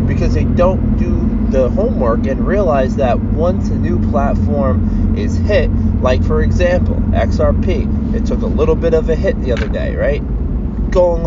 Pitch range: 100-115 Hz